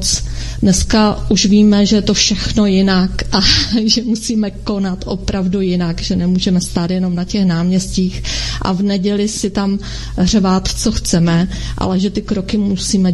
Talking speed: 155 wpm